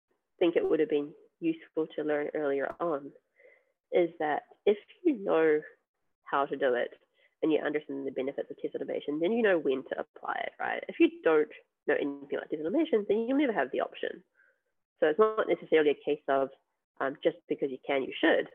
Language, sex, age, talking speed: English, female, 20-39, 205 wpm